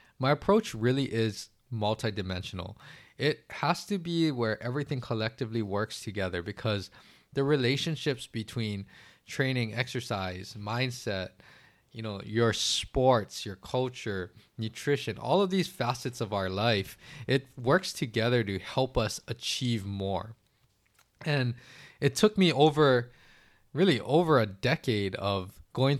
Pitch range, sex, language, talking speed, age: 105-135 Hz, male, English, 125 wpm, 20-39